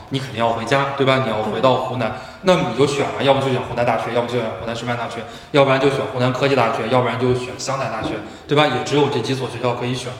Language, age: Chinese, 20-39